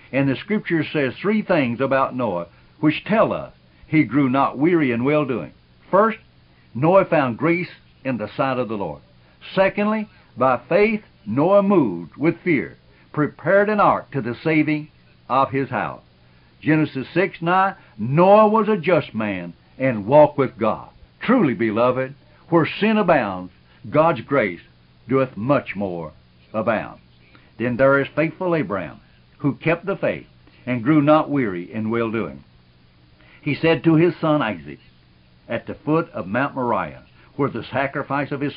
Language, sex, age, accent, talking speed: English, male, 60-79, American, 150 wpm